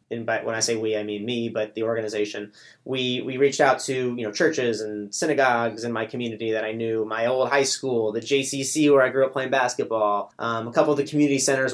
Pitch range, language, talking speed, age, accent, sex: 110-135 Hz, English, 240 wpm, 30-49, American, male